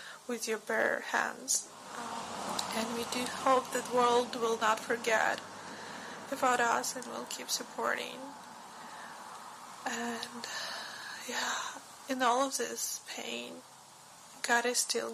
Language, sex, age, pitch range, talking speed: English, female, 20-39, 235-260 Hz, 120 wpm